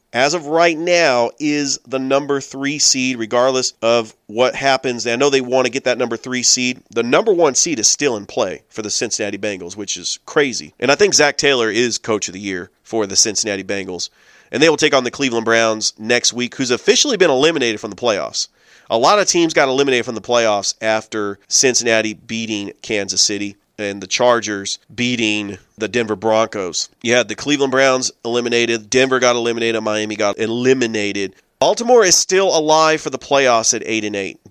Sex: male